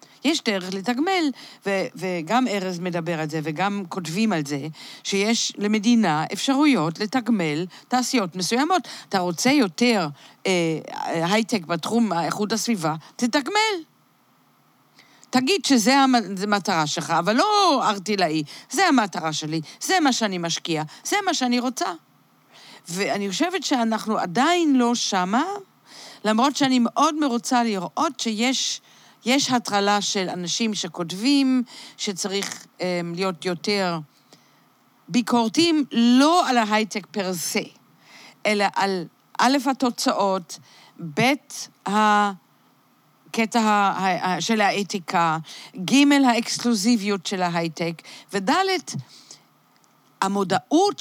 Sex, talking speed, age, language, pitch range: female, 100 wpm, 50-69, Hebrew, 185-255 Hz